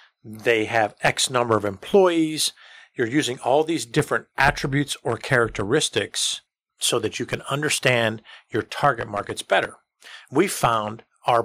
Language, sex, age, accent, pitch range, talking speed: English, male, 50-69, American, 110-145 Hz, 135 wpm